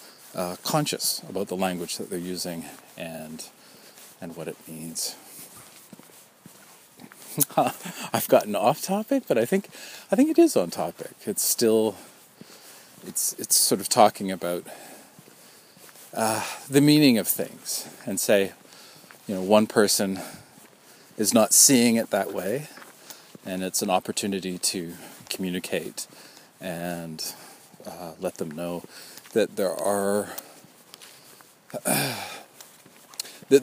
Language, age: English, 40-59